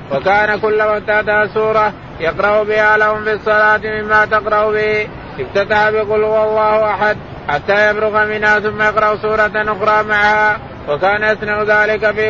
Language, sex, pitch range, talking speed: Arabic, male, 210-215 Hz, 130 wpm